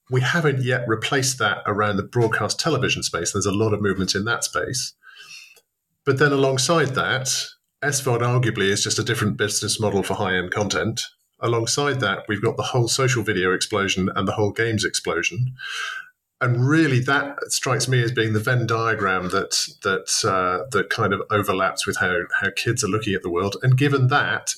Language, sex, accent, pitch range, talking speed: English, male, British, 105-135 Hz, 185 wpm